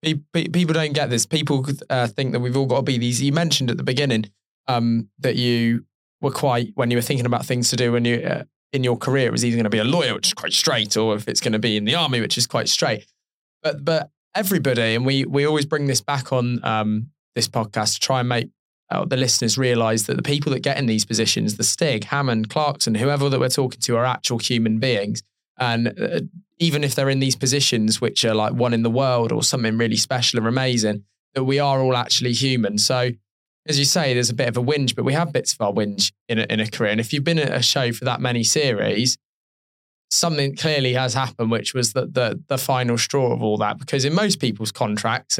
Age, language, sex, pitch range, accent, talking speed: 20-39, English, male, 115-140 Hz, British, 245 wpm